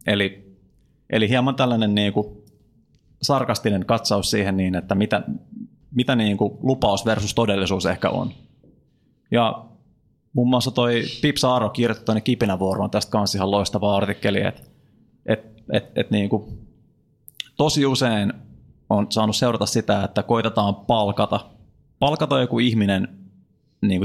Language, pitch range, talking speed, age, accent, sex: Finnish, 100-120 Hz, 130 wpm, 30-49, native, male